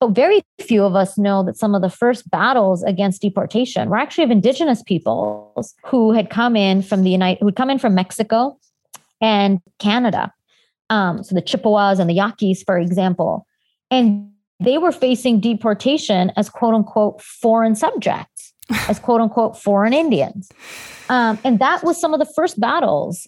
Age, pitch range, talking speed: 30-49, 190-235 Hz, 175 wpm